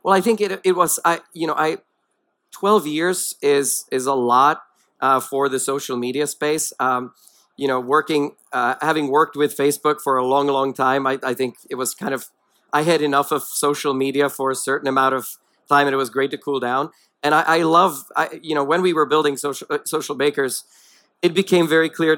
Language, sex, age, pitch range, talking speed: English, male, 40-59, 135-160 Hz, 220 wpm